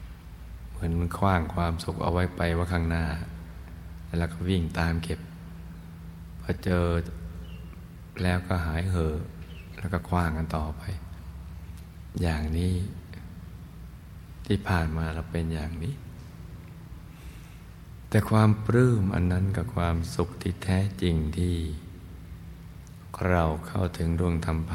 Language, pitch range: Thai, 80-90 Hz